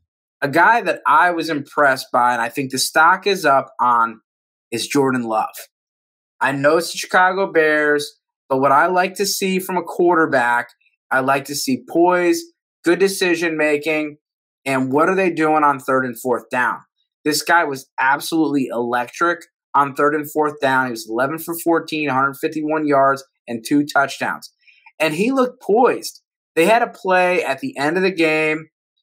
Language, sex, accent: English, male, American